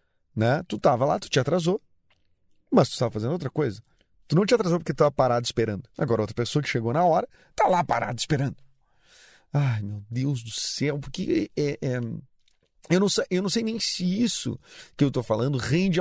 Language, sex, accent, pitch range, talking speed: Portuguese, male, Brazilian, 115-170 Hz, 205 wpm